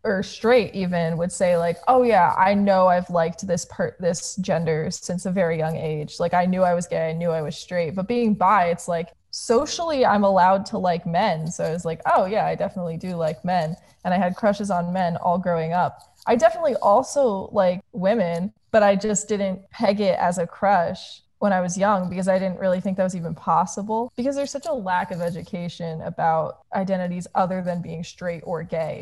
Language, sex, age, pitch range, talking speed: English, female, 20-39, 170-205 Hz, 215 wpm